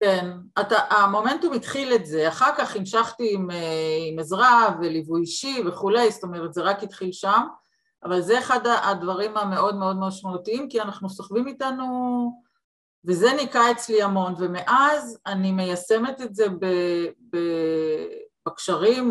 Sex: female